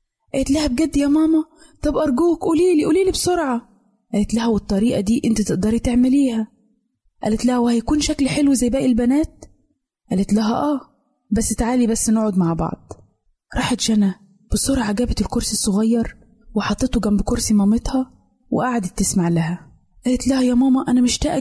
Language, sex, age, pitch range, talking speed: Arabic, female, 20-39, 205-260 Hz, 150 wpm